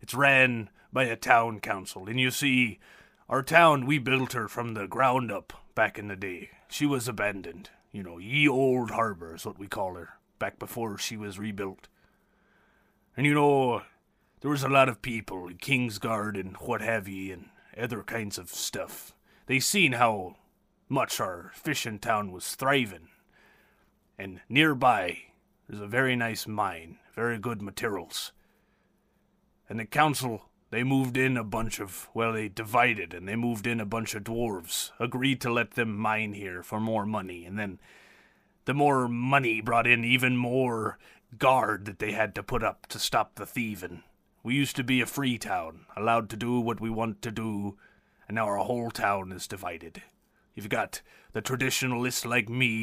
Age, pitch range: 30-49, 105-130 Hz